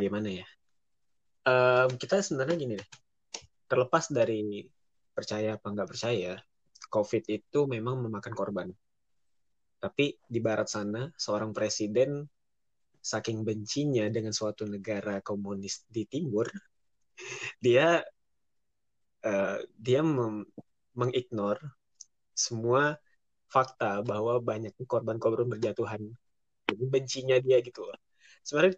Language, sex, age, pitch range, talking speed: Indonesian, male, 20-39, 110-140 Hz, 100 wpm